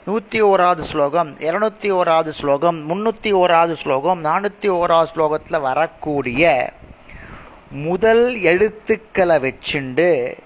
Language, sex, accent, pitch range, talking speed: Tamil, male, native, 140-190 Hz, 90 wpm